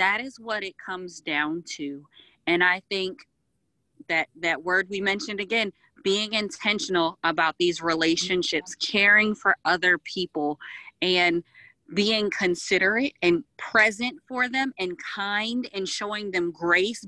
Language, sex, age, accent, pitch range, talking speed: English, female, 30-49, American, 180-225 Hz, 135 wpm